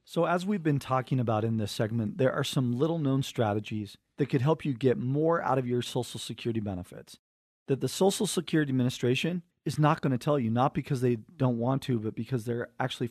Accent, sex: American, male